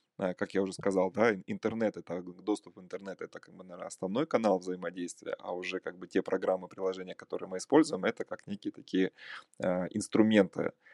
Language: Russian